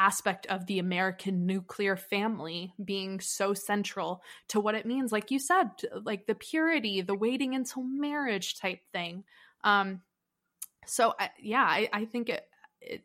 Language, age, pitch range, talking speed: English, 20-39, 180-210 Hz, 145 wpm